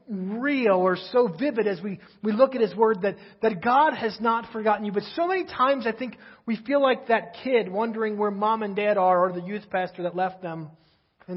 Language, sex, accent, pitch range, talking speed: English, male, American, 170-215 Hz, 225 wpm